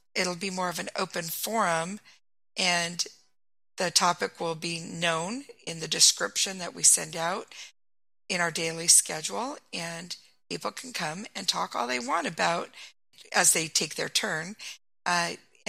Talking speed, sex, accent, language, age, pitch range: 155 wpm, female, American, English, 50-69, 165-205 Hz